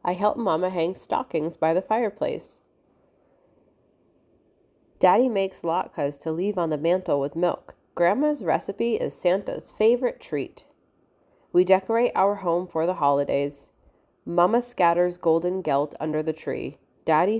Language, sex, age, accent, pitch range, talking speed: English, female, 20-39, American, 160-210 Hz, 135 wpm